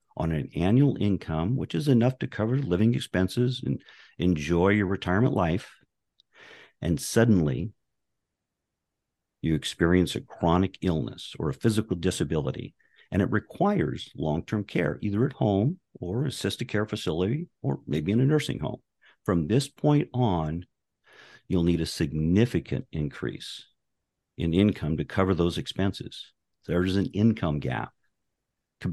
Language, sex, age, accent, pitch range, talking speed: English, male, 50-69, American, 80-115 Hz, 135 wpm